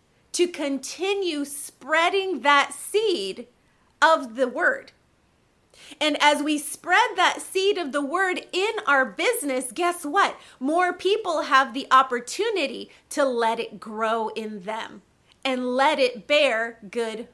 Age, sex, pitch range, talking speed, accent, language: 30-49, female, 255-345 Hz, 130 wpm, American, English